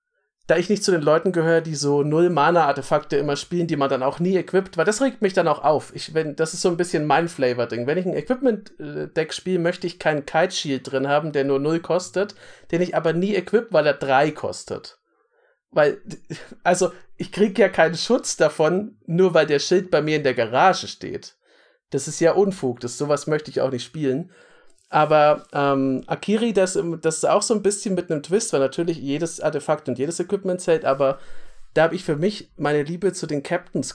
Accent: German